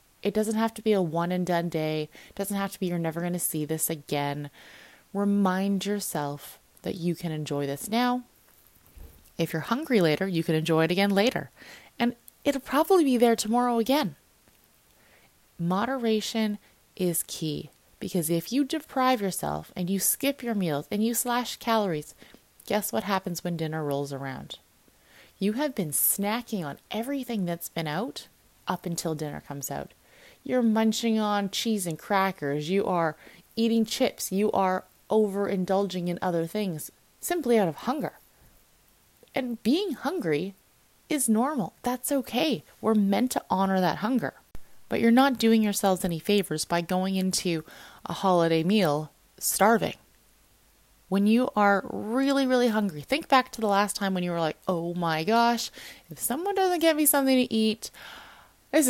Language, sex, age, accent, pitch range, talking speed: English, female, 20-39, American, 170-235 Hz, 165 wpm